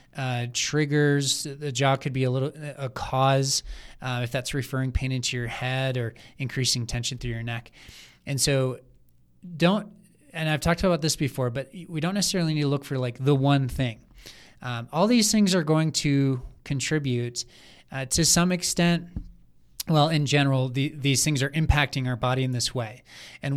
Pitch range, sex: 125-150 Hz, male